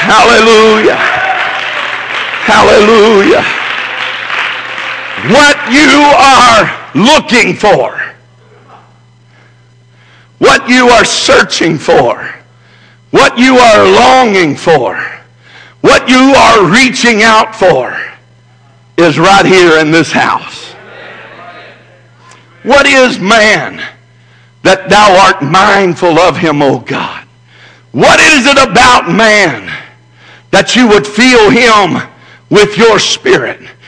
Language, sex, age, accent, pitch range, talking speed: English, male, 60-79, American, 200-255 Hz, 95 wpm